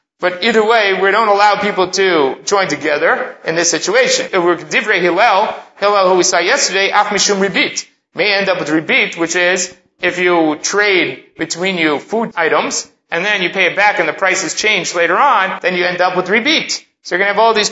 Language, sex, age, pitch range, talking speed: English, male, 30-49, 175-210 Hz, 205 wpm